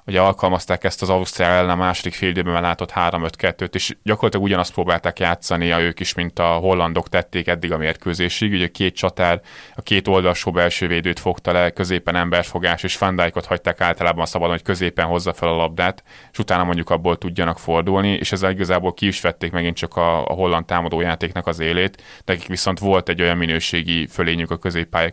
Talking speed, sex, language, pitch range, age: 195 wpm, male, Hungarian, 85-90 Hz, 20-39